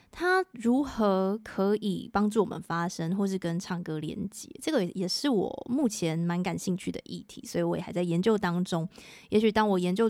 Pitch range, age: 180-225 Hz, 20-39